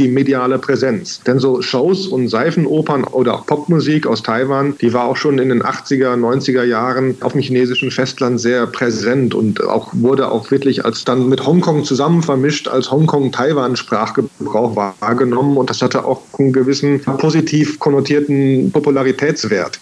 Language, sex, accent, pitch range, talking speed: German, male, German, 125-145 Hz, 160 wpm